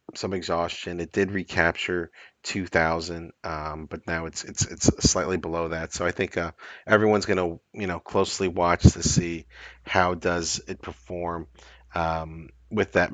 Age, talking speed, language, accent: 40-59, 155 wpm, English, American